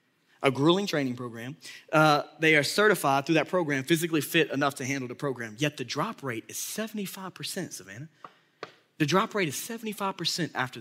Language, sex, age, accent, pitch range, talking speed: English, male, 20-39, American, 145-195 Hz, 170 wpm